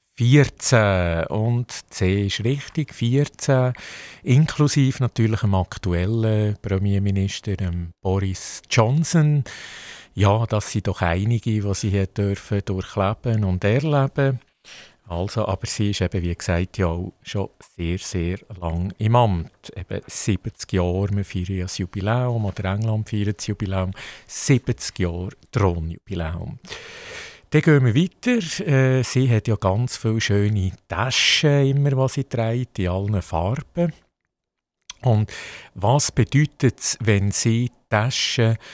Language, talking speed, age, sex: German, 120 wpm, 50-69, male